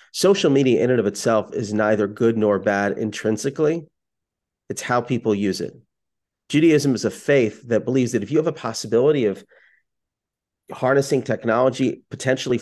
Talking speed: 155 wpm